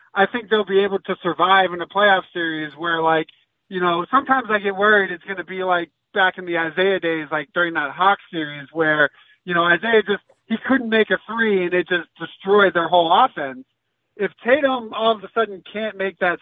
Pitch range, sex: 170-205 Hz, male